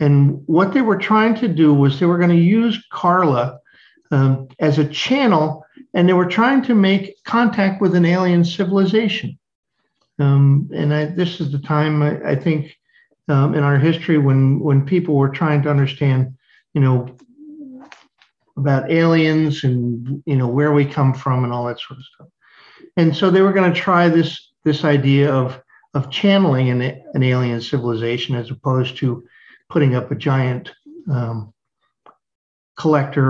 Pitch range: 135-180 Hz